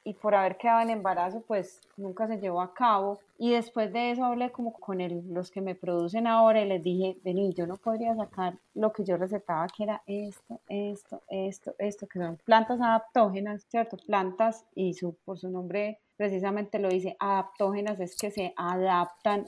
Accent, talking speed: Colombian, 190 wpm